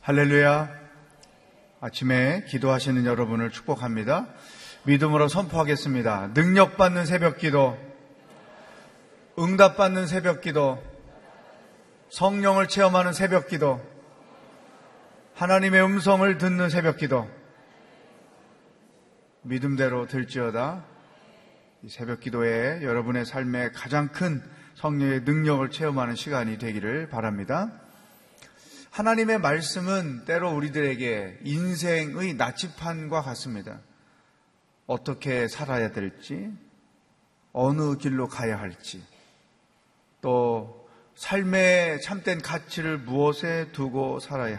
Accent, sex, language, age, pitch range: native, male, Korean, 30-49, 125-170 Hz